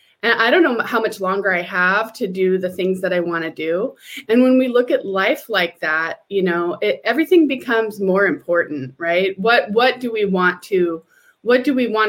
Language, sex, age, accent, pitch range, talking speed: English, female, 20-39, American, 195-250 Hz, 215 wpm